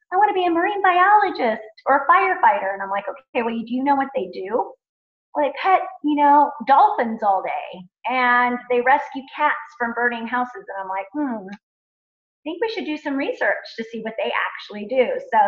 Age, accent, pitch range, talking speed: 30-49, American, 210-285 Hz, 210 wpm